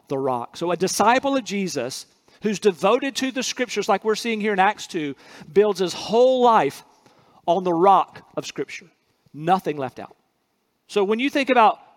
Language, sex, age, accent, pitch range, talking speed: English, male, 40-59, American, 190-245 Hz, 180 wpm